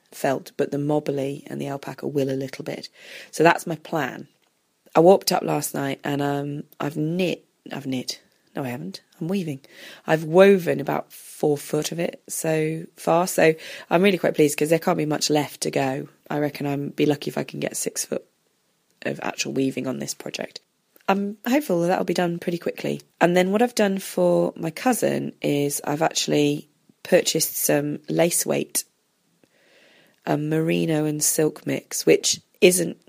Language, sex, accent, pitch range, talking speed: English, female, British, 135-165 Hz, 180 wpm